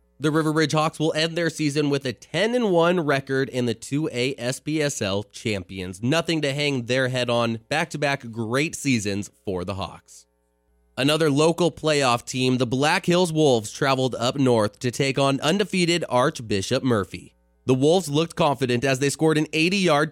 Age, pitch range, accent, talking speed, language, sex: 20-39, 115-155 Hz, American, 165 wpm, English, male